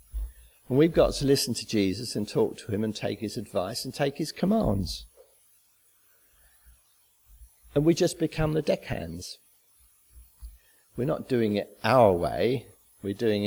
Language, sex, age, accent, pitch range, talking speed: English, male, 50-69, British, 100-140 Hz, 145 wpm